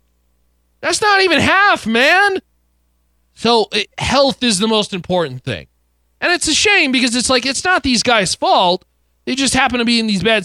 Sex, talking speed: male, 185 wpm